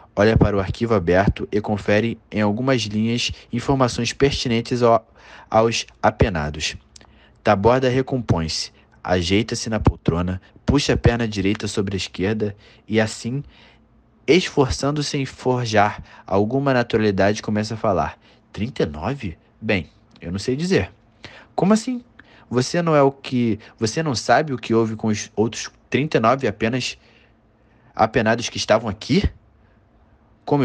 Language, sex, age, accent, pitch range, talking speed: Portuguese, male, 20-39, Brazilian, 100-120 Hz, 130 wpm